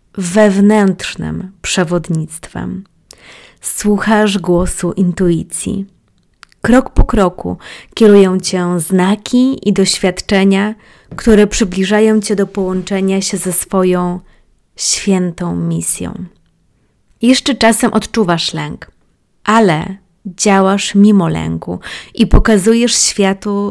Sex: female